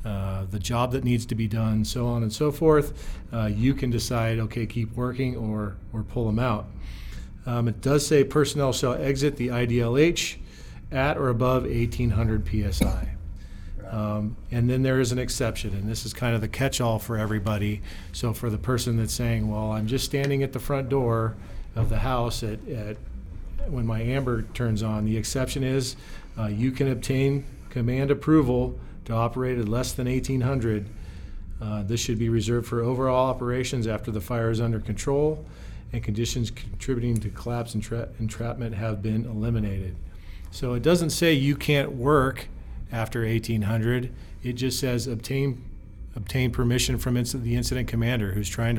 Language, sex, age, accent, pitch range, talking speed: English, male, 40-59, American, 110-130 Hz, 175 wpm